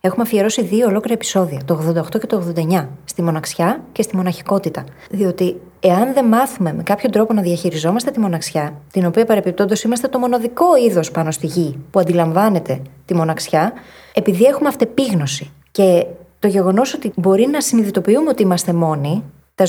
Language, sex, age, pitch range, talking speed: Greek, female, 20-39, 170-240 Hz, 165 wpm